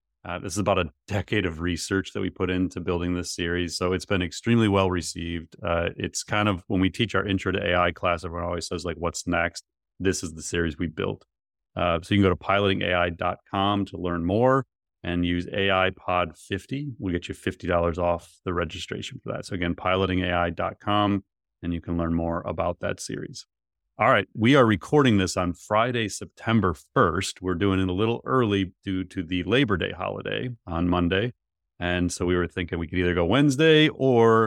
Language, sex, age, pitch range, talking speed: English, male, 30-49, 85-100 Hz, 195 wpm